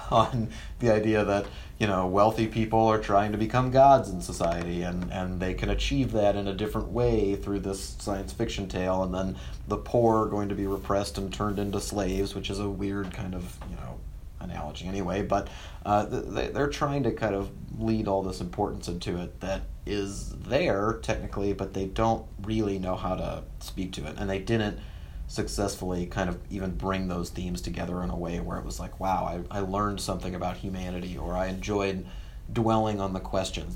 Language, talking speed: English, 200 wpm